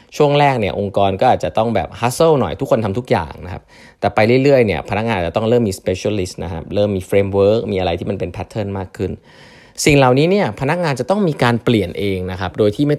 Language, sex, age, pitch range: Thai, male, 20-39, 95-125 Hz